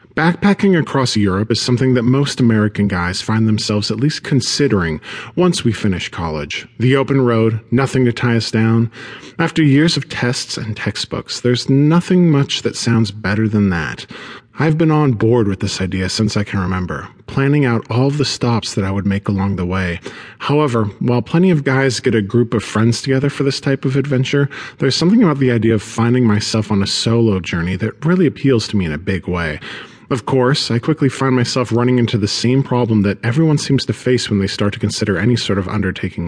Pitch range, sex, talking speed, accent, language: 105-135 Hz, male, 205 wpm, American, English